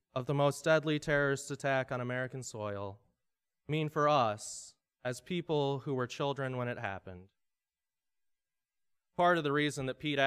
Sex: male